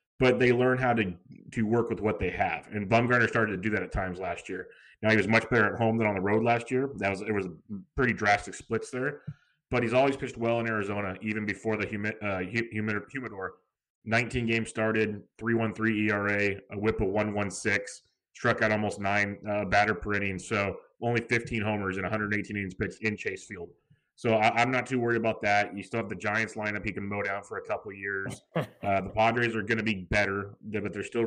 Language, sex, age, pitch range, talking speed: English, male, 30-49, 100-115 Hz, 225 wpm